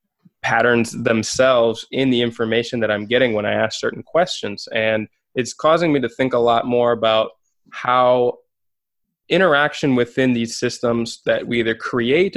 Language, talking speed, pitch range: English, 155 wpm, 115-135 Hz